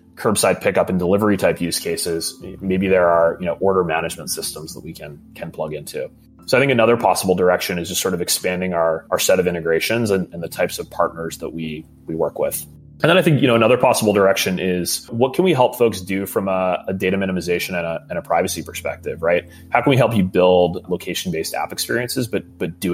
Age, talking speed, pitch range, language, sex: 30-49, 230 wpm, 85-105 Hz, English, male